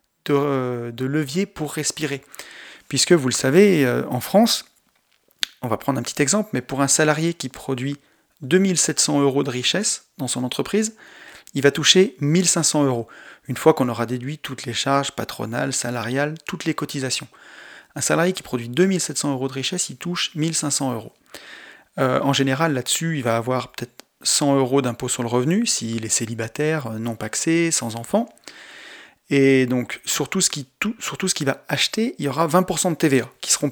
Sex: male